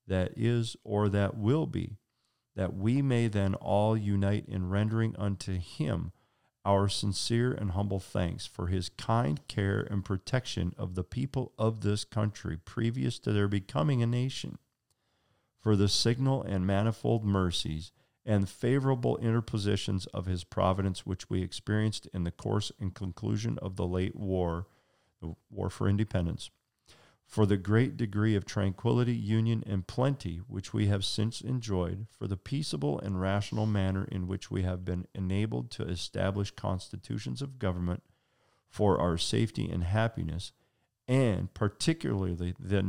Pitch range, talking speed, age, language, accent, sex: 95-115 Hz, 150 wpm, 40-59, English, American, male